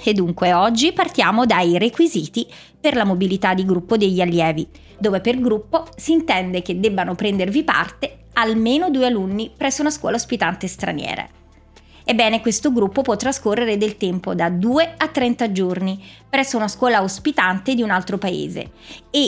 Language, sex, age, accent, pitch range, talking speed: Italian, female, 30-49, native, 195-280 Hz, 160 wpm